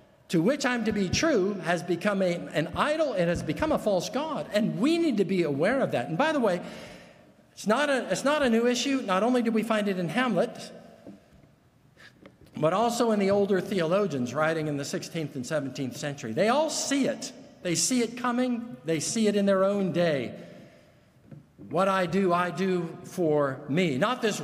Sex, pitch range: male, 170-245 Hz